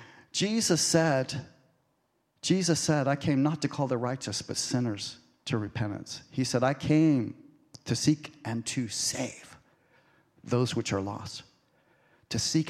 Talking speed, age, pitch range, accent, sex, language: 140 wpm, 40-59, 120-145 Hz, American, male, English